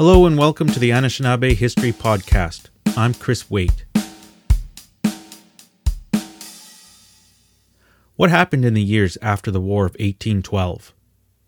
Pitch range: 100-120 Hz